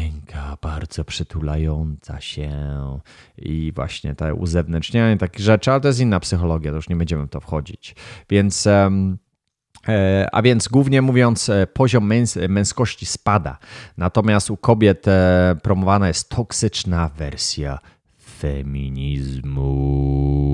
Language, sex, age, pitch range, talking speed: Polish, male, 30-49, 80-105 Hz, 110 wpm